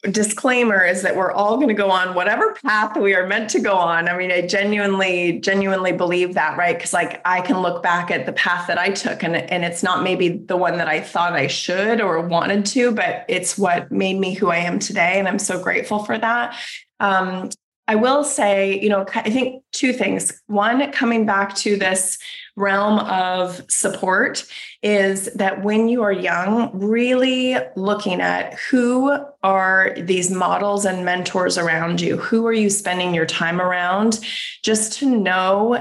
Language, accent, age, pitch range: English, American, 20-39, 180-220 Hz